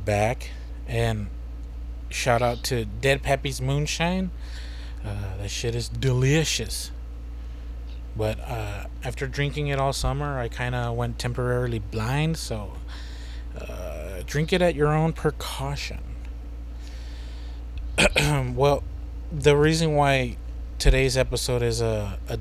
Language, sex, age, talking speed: English, male, 30-49, 115 wpm